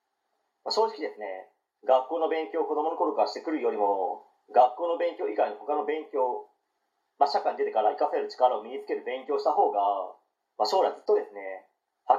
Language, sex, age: Japanese, male, 40-59